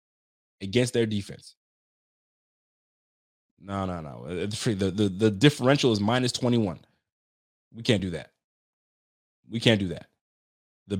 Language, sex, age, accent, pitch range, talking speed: English, male, 20-39, American, 95-120 Hz, 120 wpm